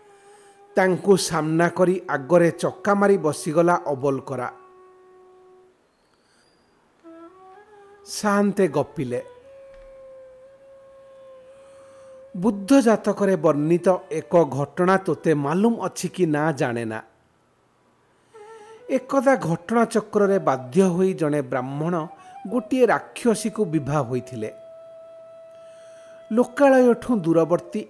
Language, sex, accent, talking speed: English, male, Indian, 65 wpm